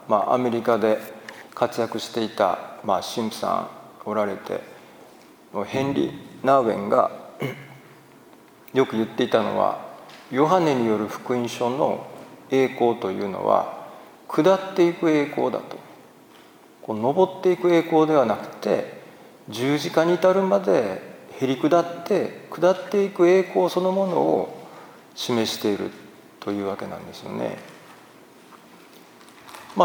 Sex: male